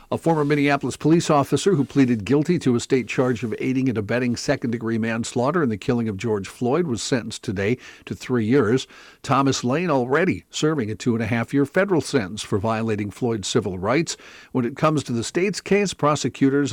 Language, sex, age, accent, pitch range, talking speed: English, male, 50-69, American, 115-140 Hz, 185 wpm